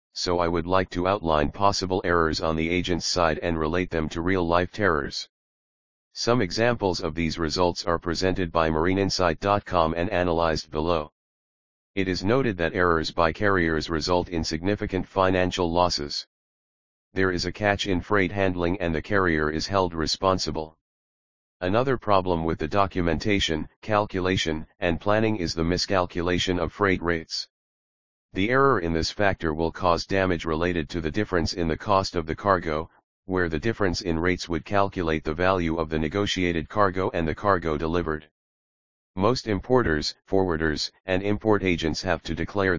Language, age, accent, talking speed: English, 40-59, American, 160 wpm